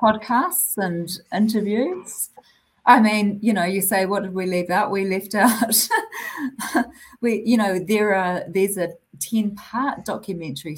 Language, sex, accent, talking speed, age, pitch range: English, female, Australian, 145 wpm, 40-59, 170-225 Hz